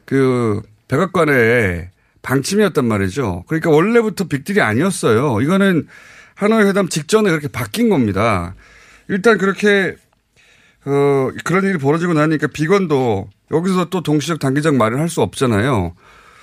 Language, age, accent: Korean, 30-49, native